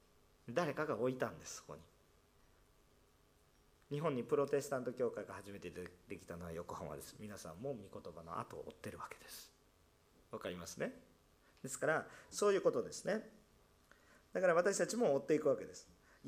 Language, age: Japanese, 40-59